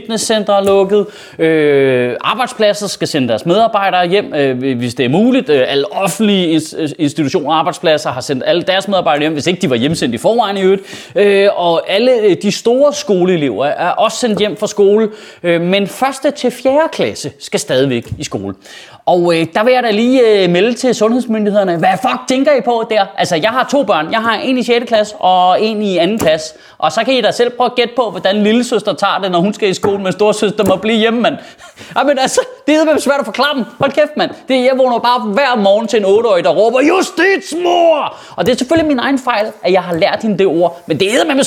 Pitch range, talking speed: 190-280 Hz, 225 wpm